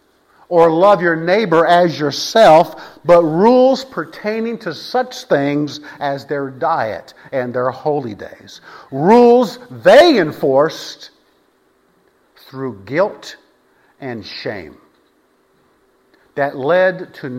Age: 50-69